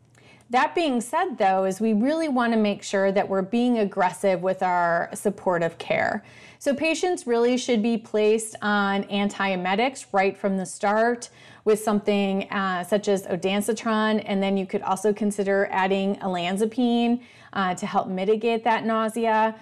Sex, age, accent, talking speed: female, 30-49, American, 155 wpm